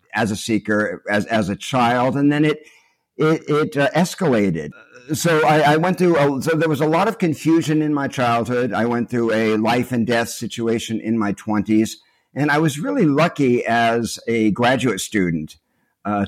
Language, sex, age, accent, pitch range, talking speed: English, male, 50-69, American, 105-145 Hz, 185 wpm